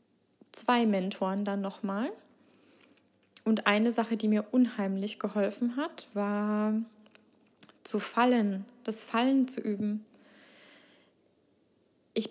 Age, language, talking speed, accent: 20-39, German, 95 wpm, German